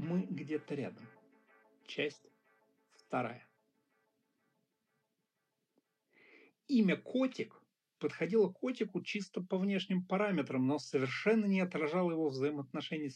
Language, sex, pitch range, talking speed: Russian, male, 135-185 Hz, 85 wpm